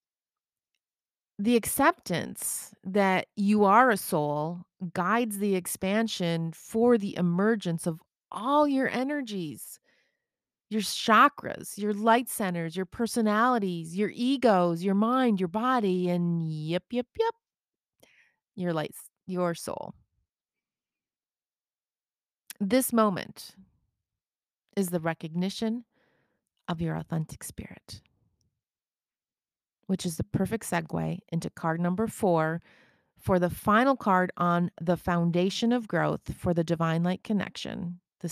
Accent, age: American, 30-49